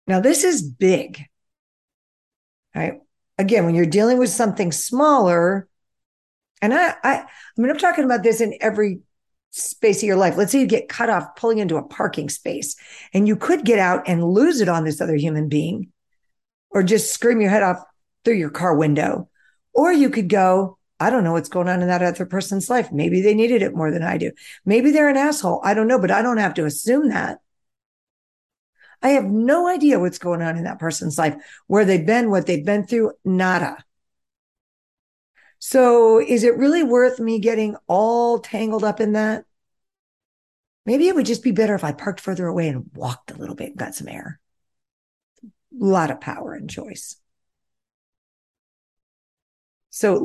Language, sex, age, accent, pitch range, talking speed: English, female, 50-69, American, 170-235 Hz, 185 wpm